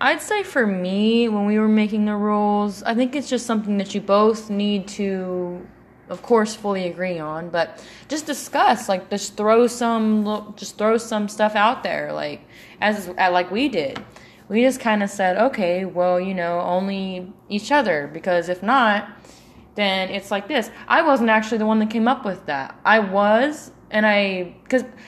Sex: female